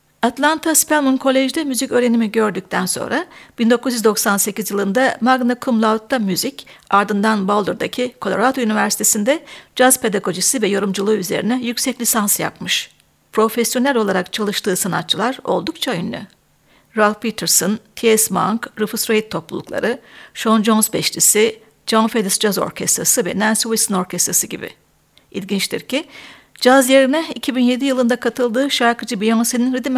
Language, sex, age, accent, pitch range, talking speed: Turkish, female, 60-79, native, 210-255 Hz, 120 wpm